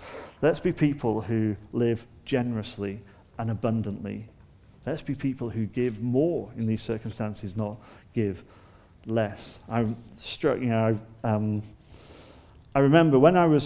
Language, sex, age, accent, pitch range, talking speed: English, male, 40-59, British, 105-130 Hz, 130 wpm